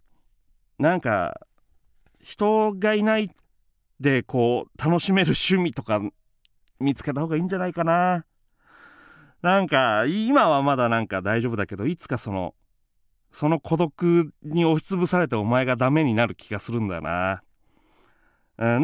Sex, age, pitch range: male, 40-59, 105-170 Hz